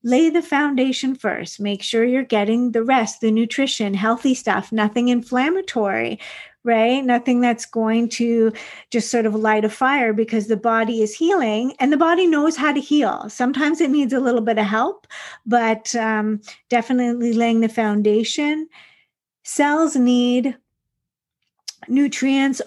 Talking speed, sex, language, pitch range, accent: 150 wpm, female, English, 215-260 Hz, American